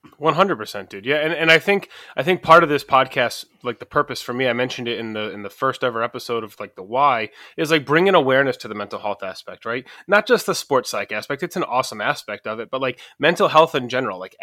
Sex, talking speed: male, 255 wpm